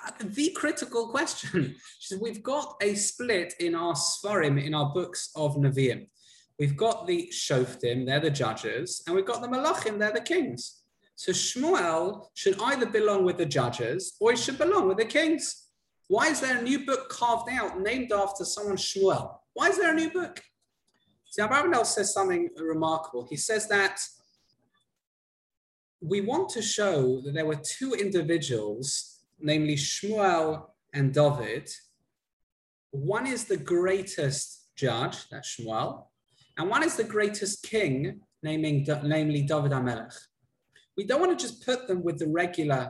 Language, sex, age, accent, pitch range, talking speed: English, male, 20-39, British, 150-235 Hz, 160 wpm